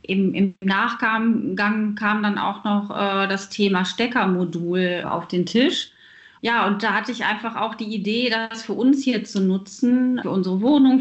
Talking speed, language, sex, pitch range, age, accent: 165 wpm, German, female, 200-255 Hz, 30-49, German